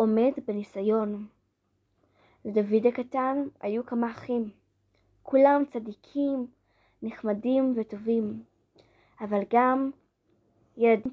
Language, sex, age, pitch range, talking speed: Hebrew, female, 20-39, 220-285 Hz, 75 wpm